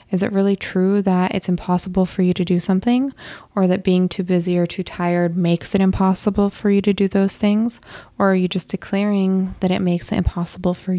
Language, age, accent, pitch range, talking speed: English, 20-39, American, 180-200 Hz, 220 wpm